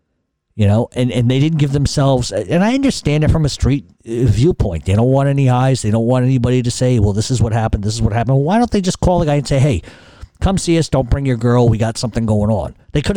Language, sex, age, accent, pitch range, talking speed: English, male, 50-69, American, 110-135 Hz, 275 wpm